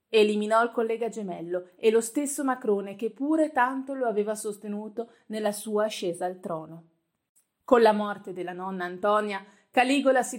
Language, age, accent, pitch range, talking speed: Italian, 30-49, native, 190-240 Hz, 155 wpm